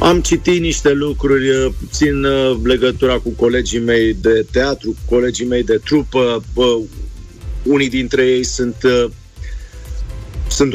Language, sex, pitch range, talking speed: Romanian, male, 110-135 Hz, 115 wpm